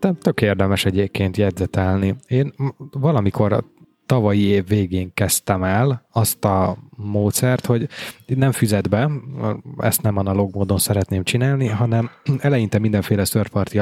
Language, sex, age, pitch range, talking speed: Hungarian, male, 20-39, 100-120 Hz, 120 wpm